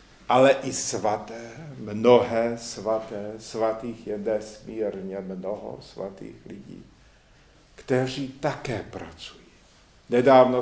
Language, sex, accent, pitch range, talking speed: Czech, male, native, 115-135 Hz, 85 wpm